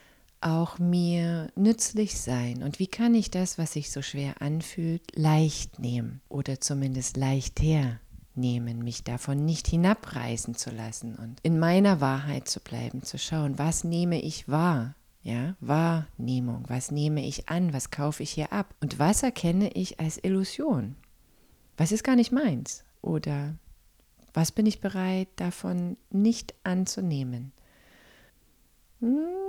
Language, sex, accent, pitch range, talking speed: English, female, German, 145-205 Hz, 140 wpm